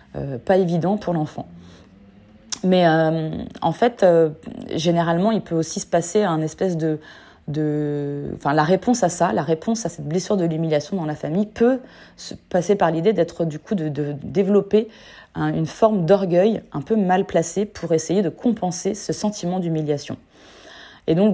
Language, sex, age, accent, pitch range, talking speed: French, female, 20-39, French, 155-200 Hz, 175 wpm